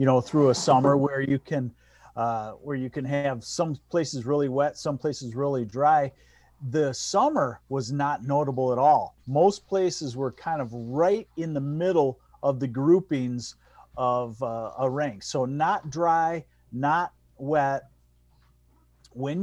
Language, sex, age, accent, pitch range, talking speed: English, male, 40-59, American, 125-165 Hz, 155 wpm